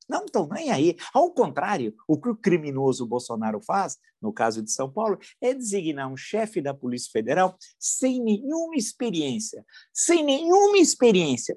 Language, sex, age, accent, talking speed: Portuguese, male, 50-69, Brazilian, 155 wpm